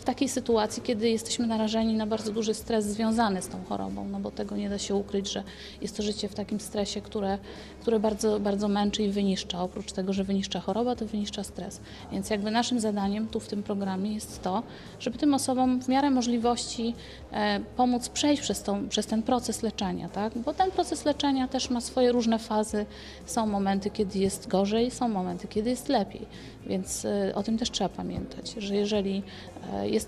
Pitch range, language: 195-230 Hz, Polish